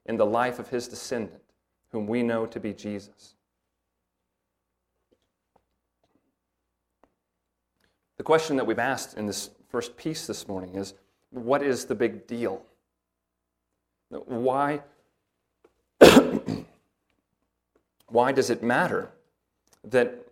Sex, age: male, 30-49